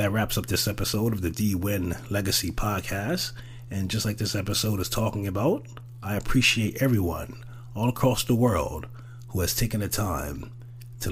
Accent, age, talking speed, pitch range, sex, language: American, 30-49, 175 wpm, 100-120 Hz, male, English